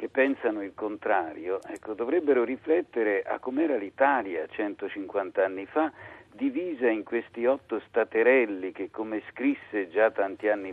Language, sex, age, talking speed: Italian, male, 50-69, 135 wpm